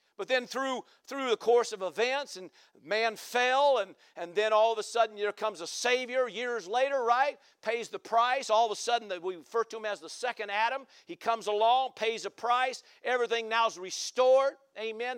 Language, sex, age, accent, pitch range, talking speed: English, male, 50-69, American, 230-275 Hz, 200 wpm